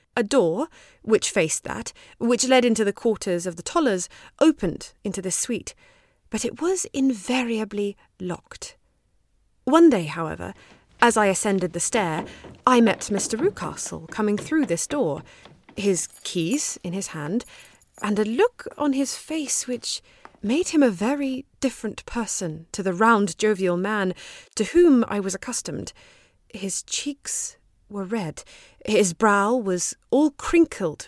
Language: English